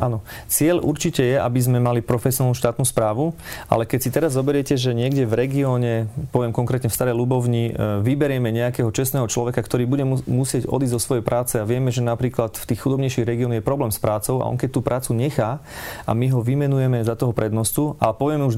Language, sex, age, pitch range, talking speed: Slovak, male, 30-49, 115-135 Hz, 205 wpm